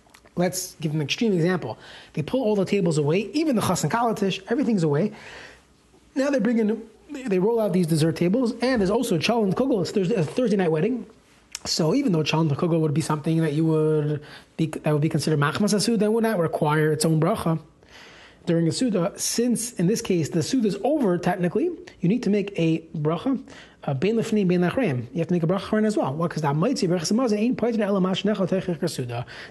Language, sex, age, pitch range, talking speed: English, male, 30-49, 160-220 Hz, 195 wpm